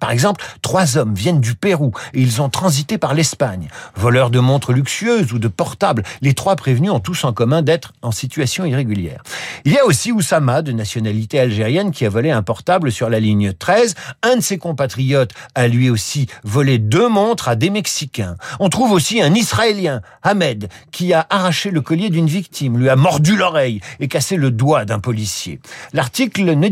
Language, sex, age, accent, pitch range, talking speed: French, male, 50-69, French, 125-185 Hz, 195 wpm